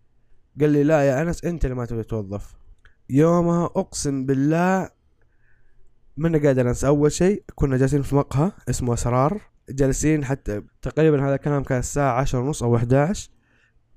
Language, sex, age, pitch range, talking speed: Arabic, male, 20-39, 120-155 Hz, 145 wpm